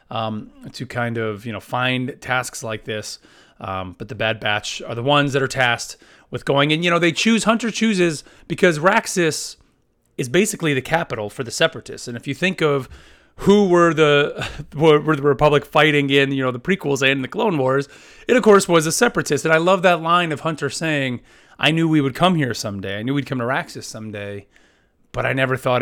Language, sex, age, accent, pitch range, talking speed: English, male, 30-49, American, 115-150 Hz, 215 wpm